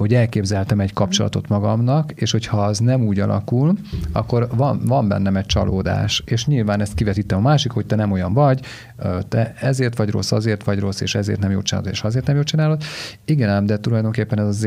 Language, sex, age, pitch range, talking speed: Hungarian, male, 40-59, 100-120 Hz, 205 wpm